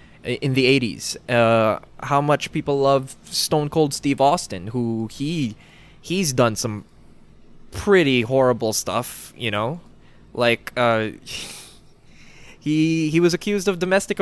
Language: English